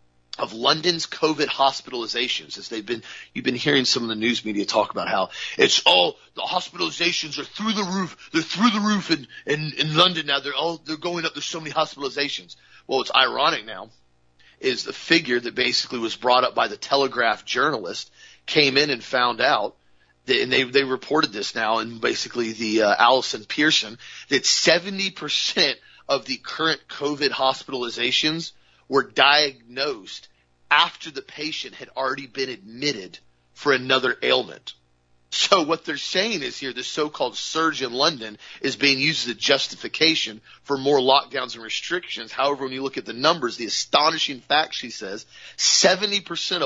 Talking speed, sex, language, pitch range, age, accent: 170 wpm, male, English, 120-155 Hz, 40-59, American